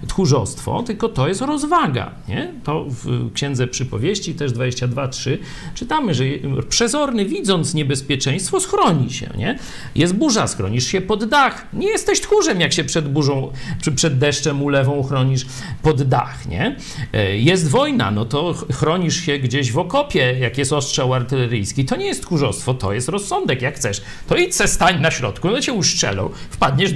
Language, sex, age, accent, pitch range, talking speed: Polish, male, 50-69, native, 130-205 Hz, 160 wpm